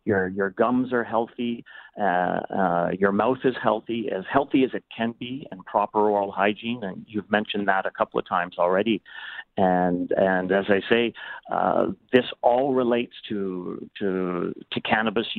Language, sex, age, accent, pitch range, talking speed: English, male, 40-59, American, 100-120 Hz, 170 wpm